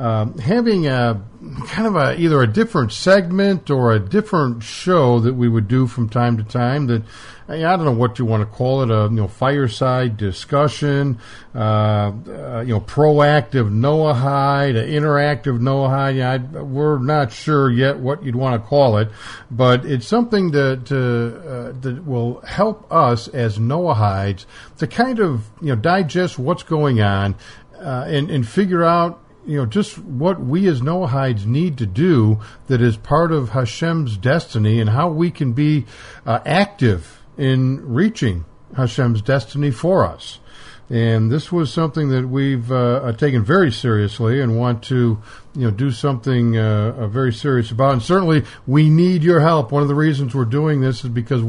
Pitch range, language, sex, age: 115-150 Hz, English, male, 50-69